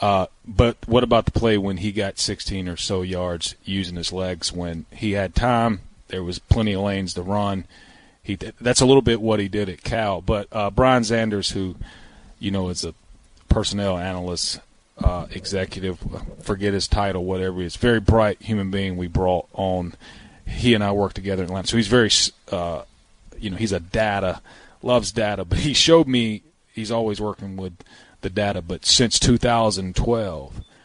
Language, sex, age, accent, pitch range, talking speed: English, male, 30-49, American, 95-110 Hz, 185 wpm